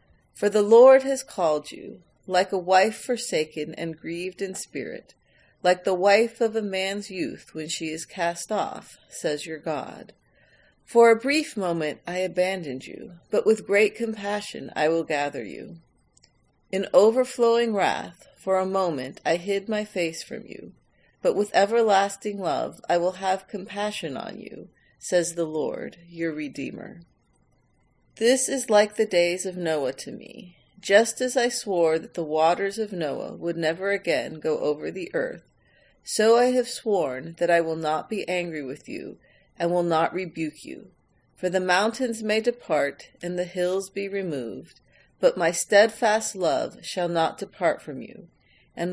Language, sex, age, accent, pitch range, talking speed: English, female, 40-59, American, 170-215 Hz, 165 wpm